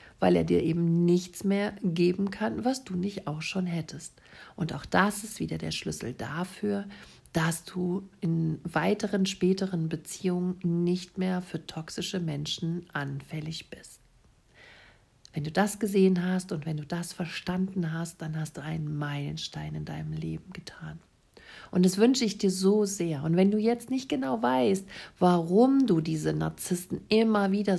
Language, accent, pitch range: German, German, 160-200 Hz